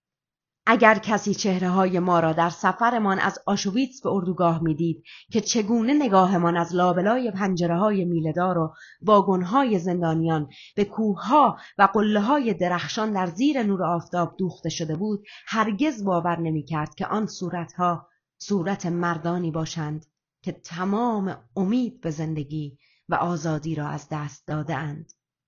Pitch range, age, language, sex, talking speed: 165-205 Hz, 30-49, Persian, female, 130 wpm